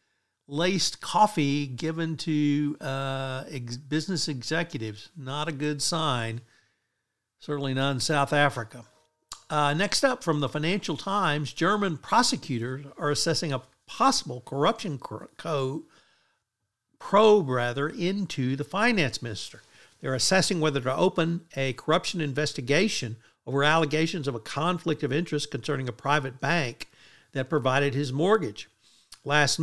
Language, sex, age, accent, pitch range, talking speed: English, male, 60-79, American, 135-165 Hz, 130 wpm